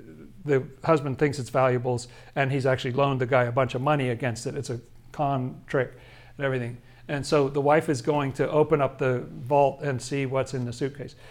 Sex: male